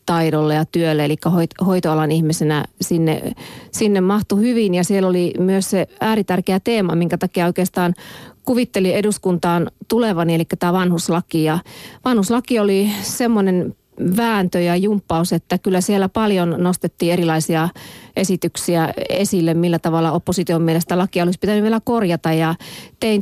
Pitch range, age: 170-205 Hz, 30-49